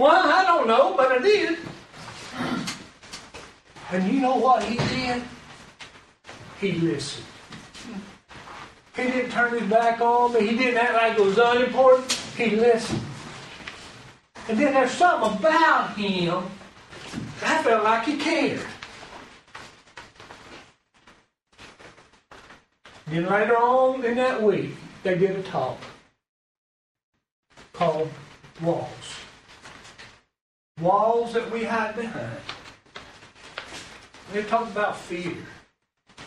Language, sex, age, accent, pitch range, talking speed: English, male, 60-79, American, 170-240 Hz, 105 wpm